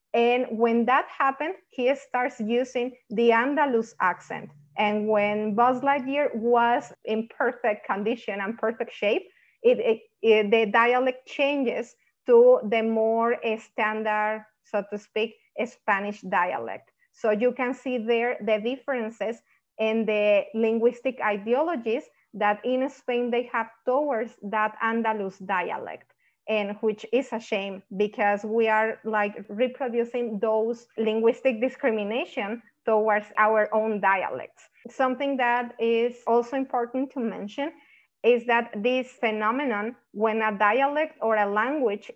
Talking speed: 125 wpm